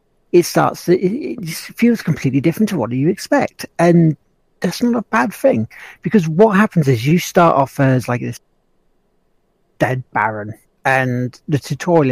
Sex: male